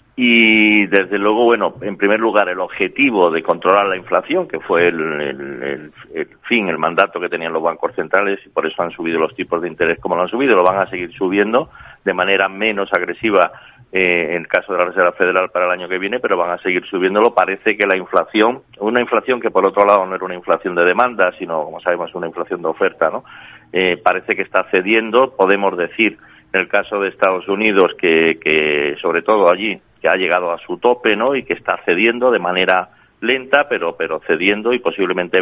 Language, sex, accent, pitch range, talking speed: Spanish, male, Spanish, 90-110 Hz, 215 wpm